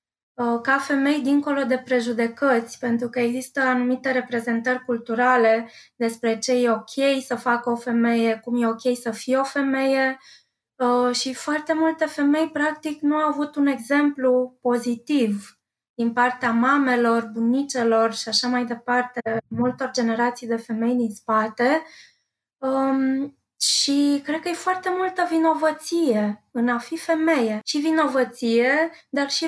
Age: 20-39